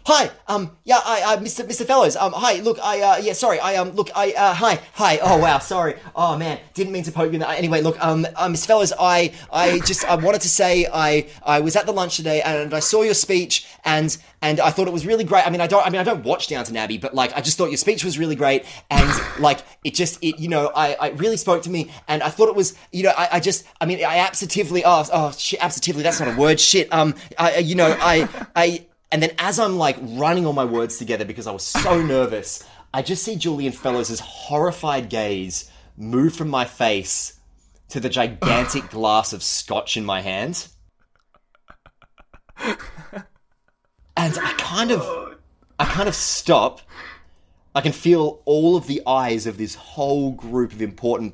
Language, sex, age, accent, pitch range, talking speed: English, male, 20-39, Australian, 125-180 Hz, 215 wpm